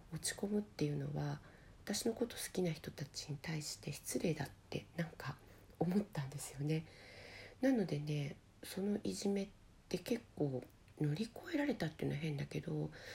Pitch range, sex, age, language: 145-185 Hz, female, 40-59, Japanese